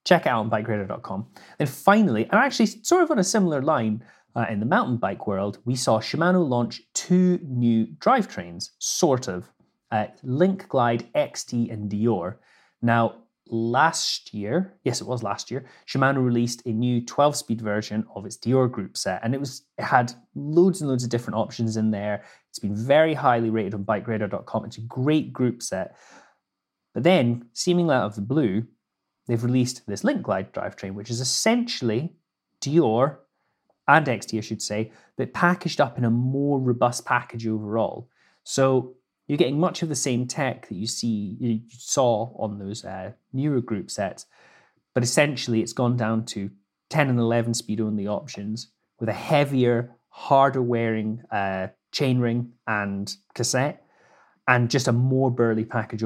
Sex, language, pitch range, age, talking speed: male, English, 110-135 Hz, 30-49, 165 wpm